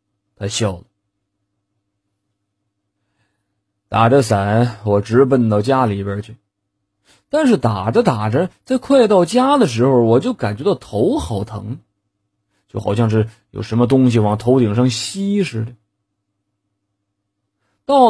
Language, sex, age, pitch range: Chinese, male, 30-49, 100-120 Hz